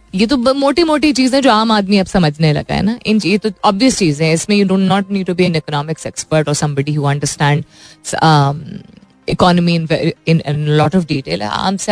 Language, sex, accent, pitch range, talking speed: Hindi, female, native, 165-225 Hz, 120 wpm